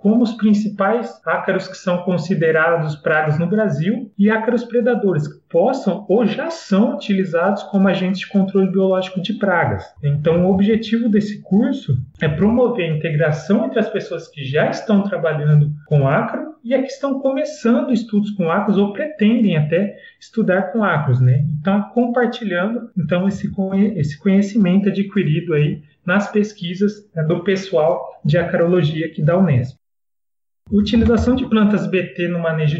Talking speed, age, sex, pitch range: 150 wpm, 30-49, male, 160-210 Hz